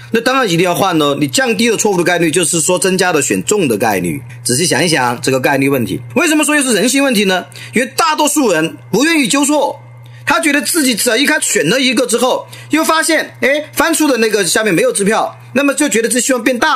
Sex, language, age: male, Chinese, 40-59